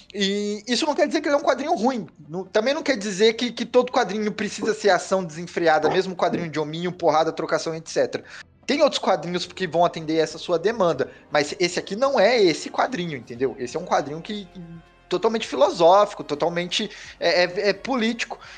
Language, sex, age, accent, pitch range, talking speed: Portuguese, male, 20-39, Brazilian, 165-230 Hz, 180 wpm